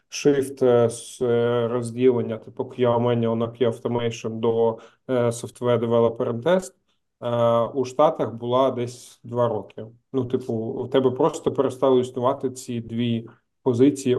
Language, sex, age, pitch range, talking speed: Ukrainian, male, 20-39, 115-130 Hz, 125 wpm